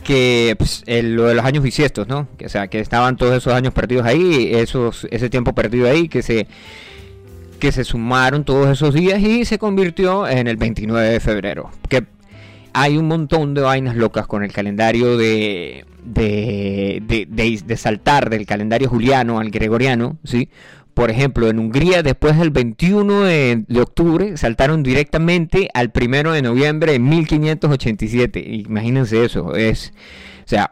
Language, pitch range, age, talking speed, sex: Spanish, 110-145 Hz, 30-49, 165 wpm, male